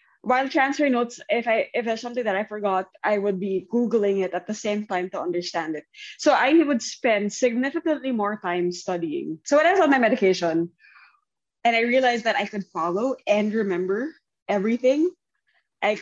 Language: English